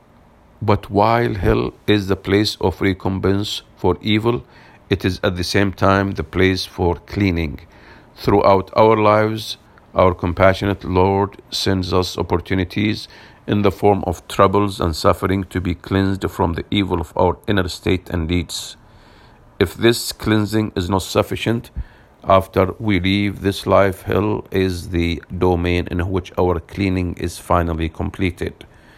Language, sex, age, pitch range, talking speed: English, male, 50-69, 90-105 Hz, 145 wpm